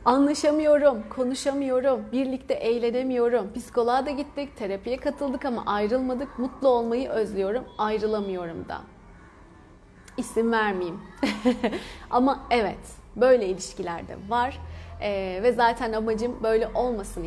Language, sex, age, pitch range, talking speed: Turkish, female, 30-49, 205-270 Hz, 105 wpm